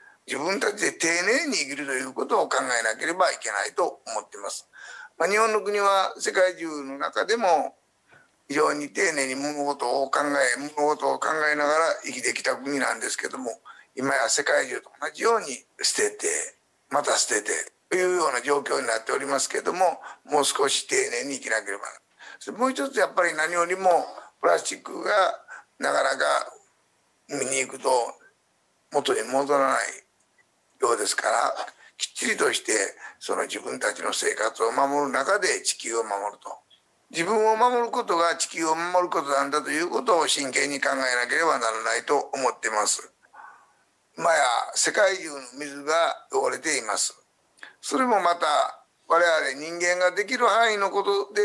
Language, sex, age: Japanese, male, 50-69